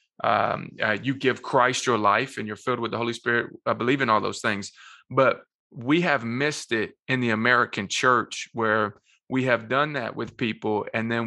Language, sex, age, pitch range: English, male, 20-39, 115-135 Hz